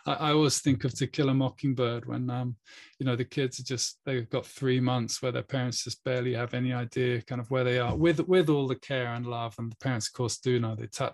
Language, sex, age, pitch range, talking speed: English, male, 20-39, 120-135 Hz, 265 wpm